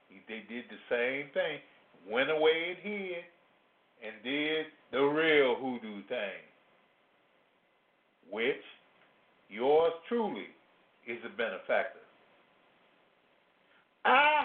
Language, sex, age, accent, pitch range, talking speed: English, male, 50-69, American, 175-285 Hz, 95 wpm